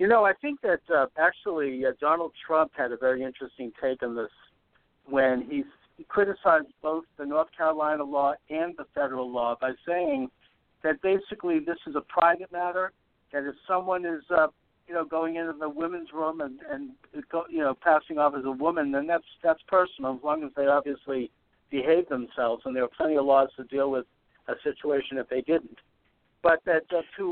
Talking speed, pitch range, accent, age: 195 wpm, 145-185 Hz, American, 60-79